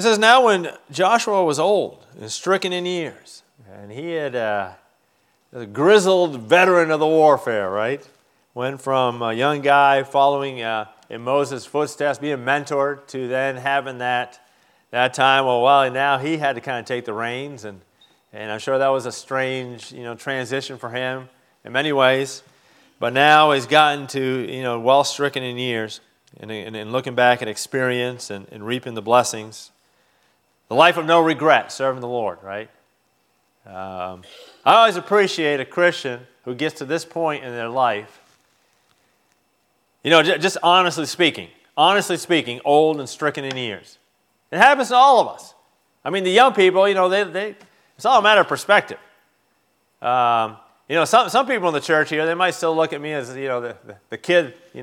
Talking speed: 190 wpm